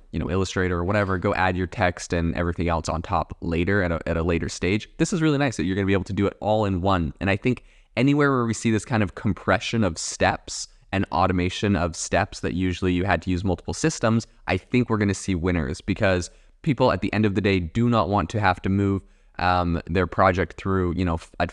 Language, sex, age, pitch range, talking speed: English, male, 20-39, 90-105 Hz, 255 wpm